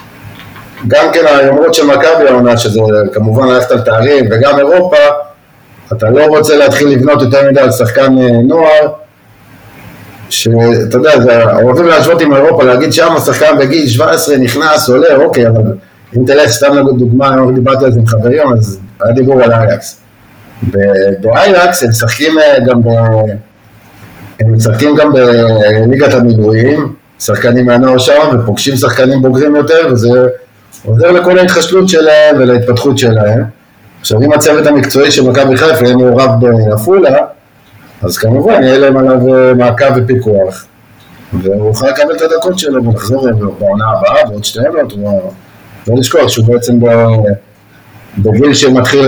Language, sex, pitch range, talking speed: Hebrew, male, 110-140 Hz, 135 wpm